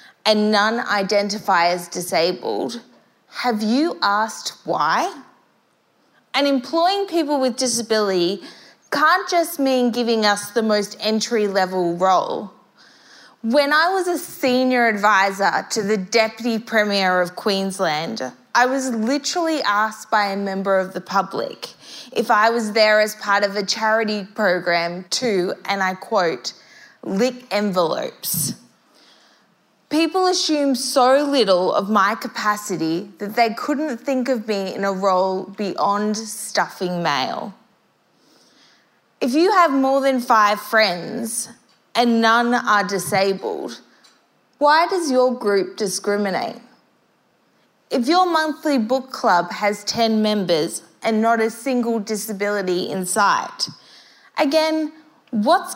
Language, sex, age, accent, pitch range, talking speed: English, female, 20-39, Australian, 200-260 Hz, 125 wpm